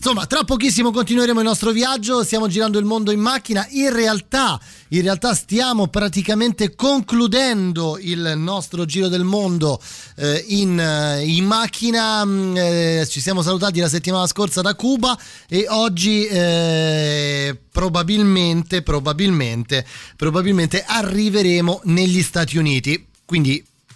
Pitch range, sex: 150-200 Hz, male